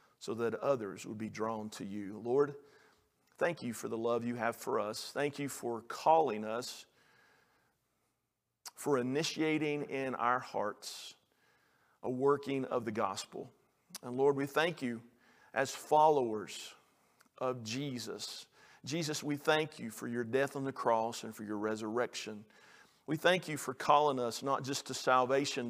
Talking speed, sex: 155 wpm, male